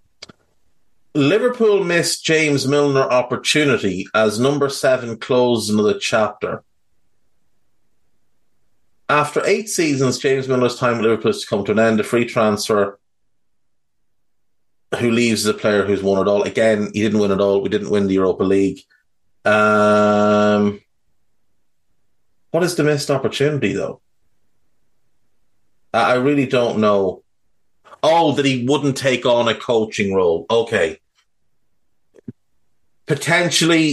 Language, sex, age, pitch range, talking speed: English, male, 30-49, 105-140 Hz, 125 wpm